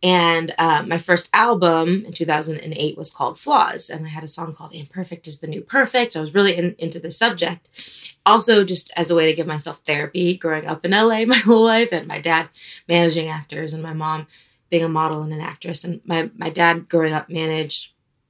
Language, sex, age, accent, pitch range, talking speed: English, female, 20-39, American, 155-180 Hz, 215 wpm